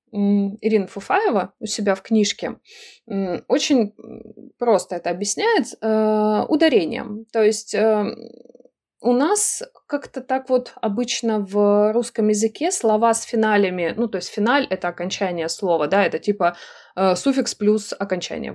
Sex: female